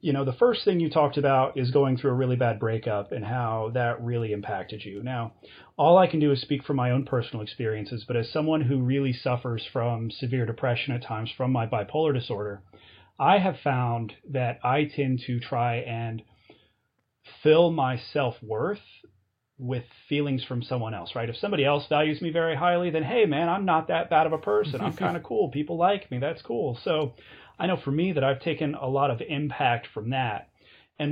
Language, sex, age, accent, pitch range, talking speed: English, male, 30-49, American, 115-150 Hz, 210 wpm